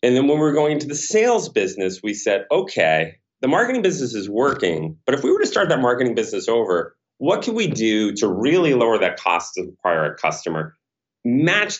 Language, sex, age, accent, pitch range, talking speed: English, male, 40-59, American, 90-145 Hz, 210 wpm